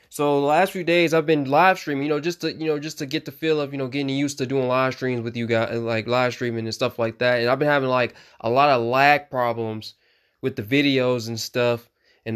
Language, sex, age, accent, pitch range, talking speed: English, male, 20-39, American, 120-150 Hz, 265 wpm